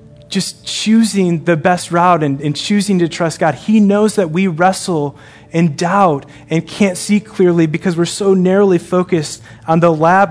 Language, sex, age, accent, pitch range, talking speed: English, male, 20-39, American, 140-180 Hz, 175 wpm